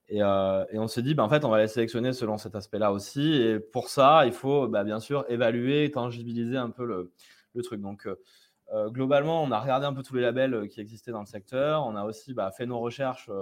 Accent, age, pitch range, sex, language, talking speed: French, 20-39, 105-130 Hz, male, French, 245 wpm